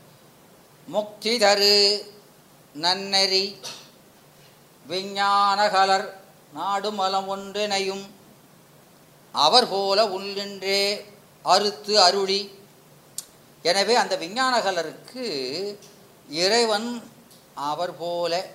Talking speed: 60 wpm